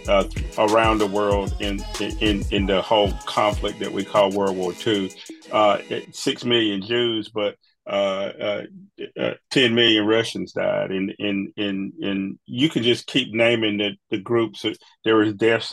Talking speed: 165 wpm